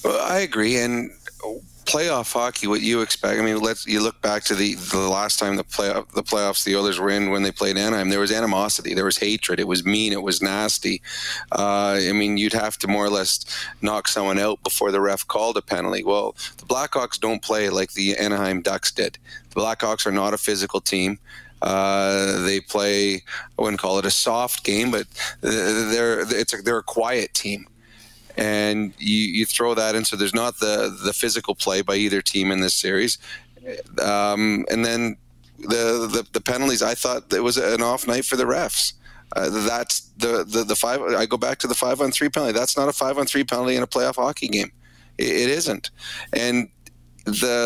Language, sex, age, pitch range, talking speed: English, male, 30-49, 100-115 Hz, 210 wpm